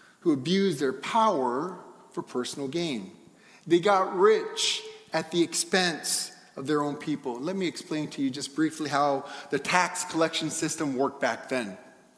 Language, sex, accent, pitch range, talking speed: English, male, American, 170-225 Hz, 155 wpm